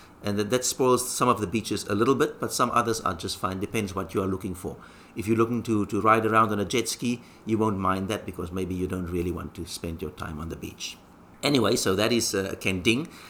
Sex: male